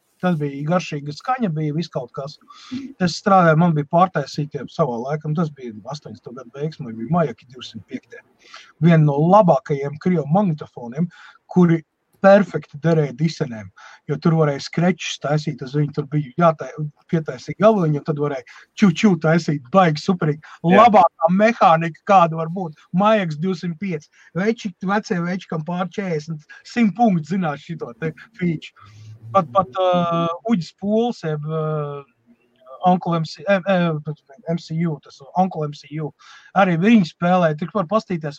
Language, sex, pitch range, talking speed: English, male, 155-195 Hz, 140 wpm